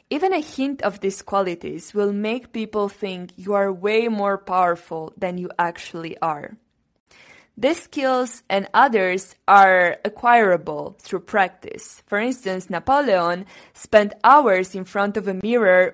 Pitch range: 185-230 Hz